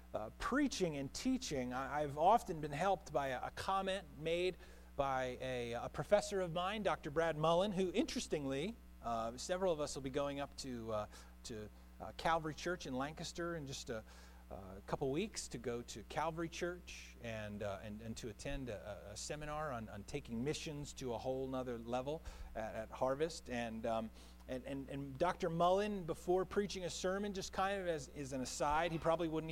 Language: English